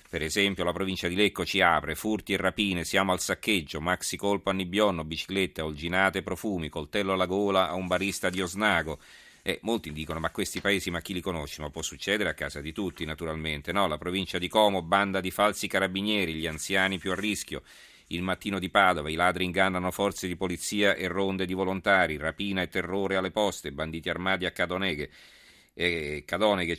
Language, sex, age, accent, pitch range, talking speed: Italian, male, 40-59, native, 85-100 Hz, 195 wpm